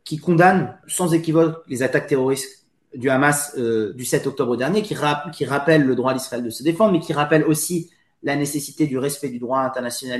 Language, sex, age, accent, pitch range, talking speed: French, male, 30-49, French, 150-200 Hz, 205 wpm